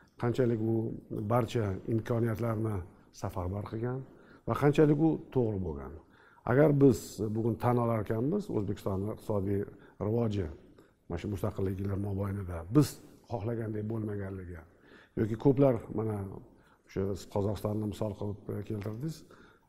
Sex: male